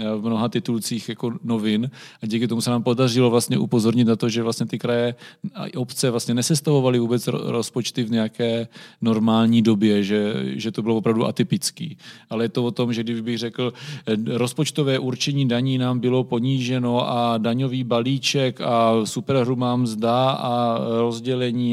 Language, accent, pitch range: Czech, native, 115-125 Hz